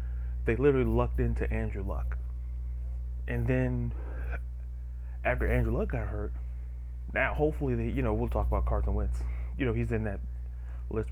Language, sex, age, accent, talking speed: English, male, 30-49, American, 155 wpm